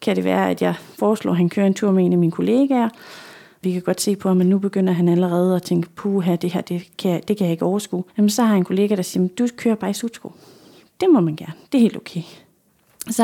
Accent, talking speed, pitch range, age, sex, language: native, 270 wpm, 190-235 Hz, 30-49, female, Danish